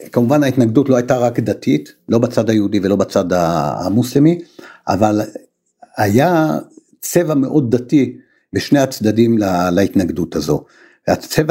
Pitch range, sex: 110-150 Hz, male